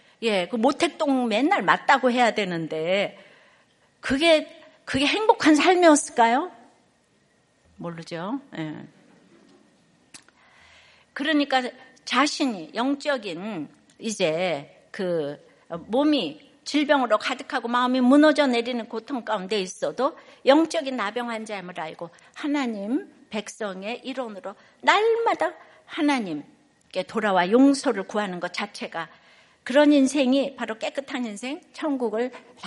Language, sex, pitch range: Korean, female, 215-285 Hz